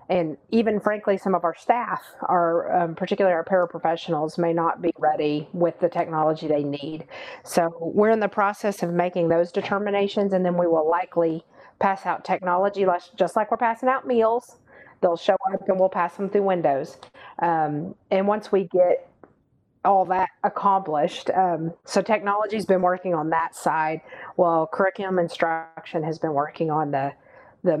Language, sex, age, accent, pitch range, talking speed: English, female, 40-59, American, 165-195 Hz, 170 wpm